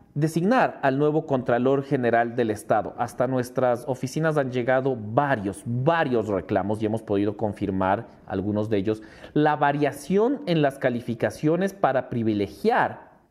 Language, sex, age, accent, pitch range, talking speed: English, male, 40-59, Mexican, 135-190 Hz, 130 wpm